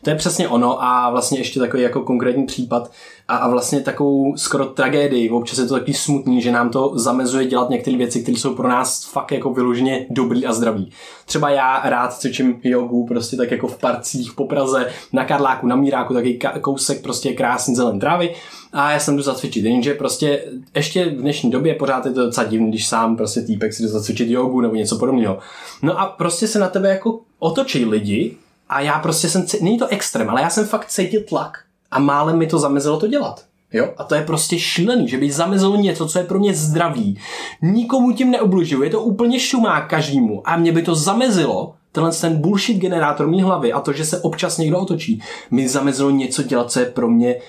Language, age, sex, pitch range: Czech, 20-39, male, 125-165 Hz